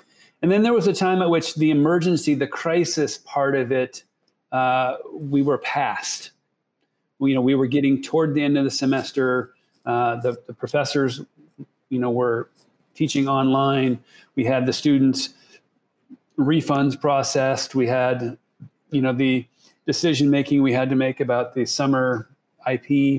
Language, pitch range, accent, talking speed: English, 125-145 Hz, American, 160 wpm